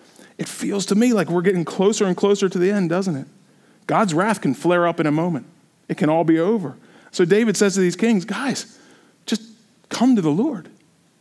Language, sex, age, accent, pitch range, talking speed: English, male, 40-59, American, 185-240 Hz, 215 wpm